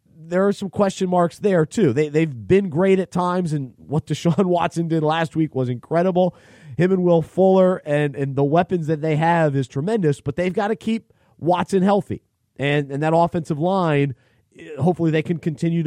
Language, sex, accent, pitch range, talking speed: English, male, American, 140-190 Hz, 195 wpm